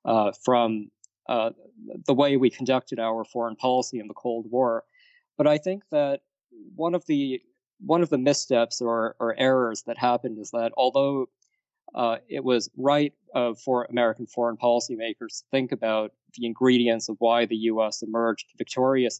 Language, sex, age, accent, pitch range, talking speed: English, male, 20-39, American, 115-135 Hz, 165 wpm